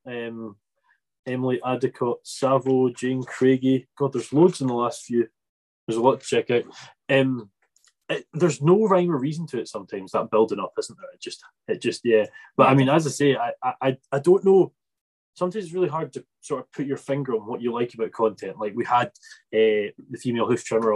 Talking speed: 210 wpm